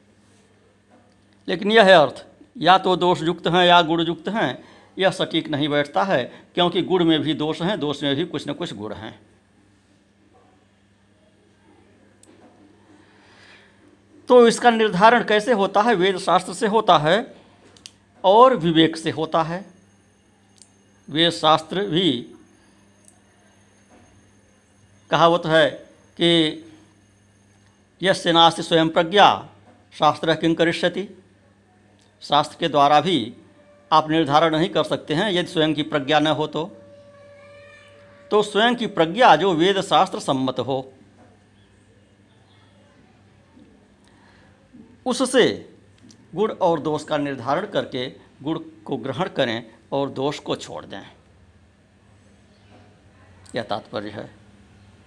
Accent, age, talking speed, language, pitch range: native, 60-79, 115 wpm, Hindi, 100-170 Hz